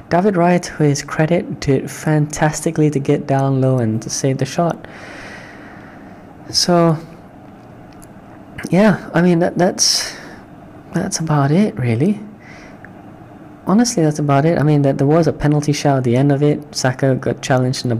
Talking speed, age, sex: 160 wpm, 20-39, male